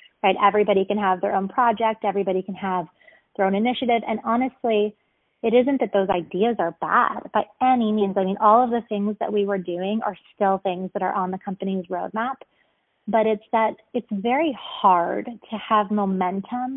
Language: English